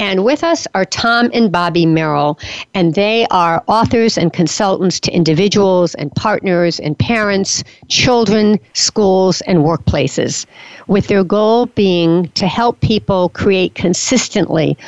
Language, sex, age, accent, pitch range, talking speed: English, female, 60-79, American, 170-220 Hz, 135 wpm